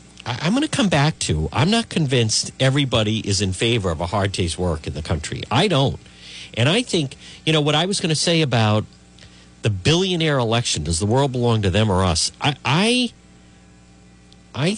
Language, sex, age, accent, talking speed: English, male, 50-69, American, 200 wpm